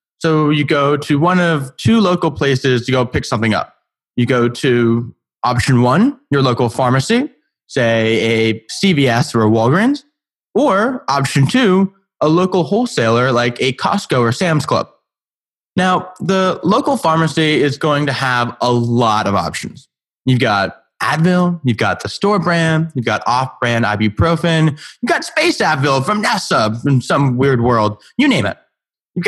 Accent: American